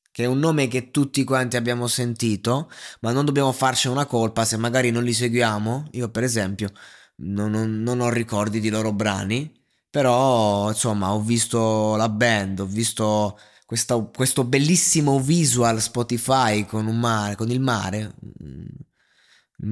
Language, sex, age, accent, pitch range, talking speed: Italian, male, 20-39, native, 105-130 Hz, 155 wpm